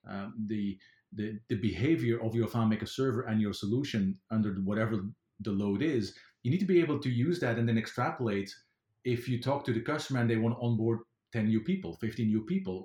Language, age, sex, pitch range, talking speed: English, 40-59, male, 105-120 Hz, 215 wpm